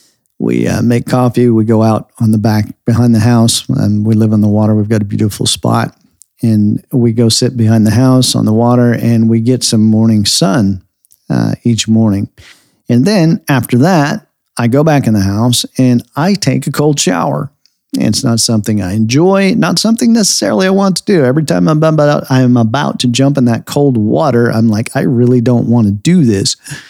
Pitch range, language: 110-140 Hz, English